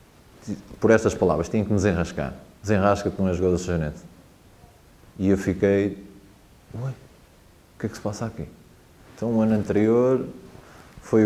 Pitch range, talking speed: 90-110 Hz, 160 wpm